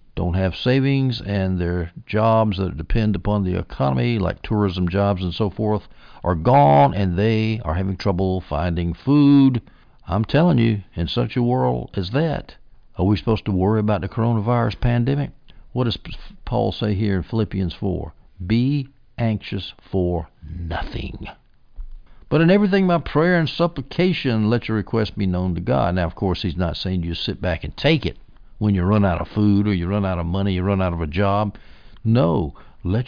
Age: 60-79